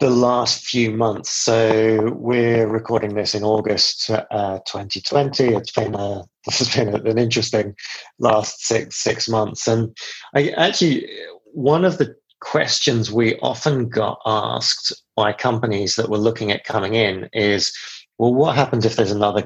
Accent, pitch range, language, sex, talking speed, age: British, 100-115 Hz, English, male, 155 wpm, 30-49